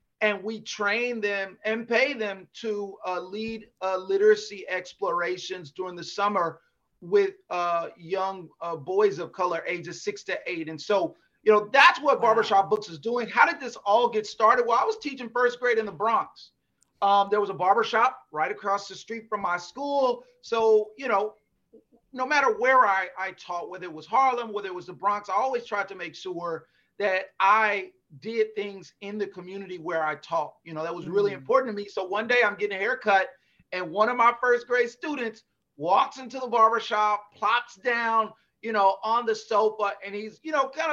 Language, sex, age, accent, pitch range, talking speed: English, male, 30-49, American, 195-245 Hz, 200 wpm